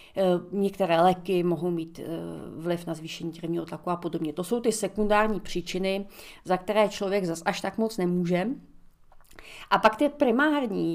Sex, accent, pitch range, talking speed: female, native, 185-225 Hz, 155 wpm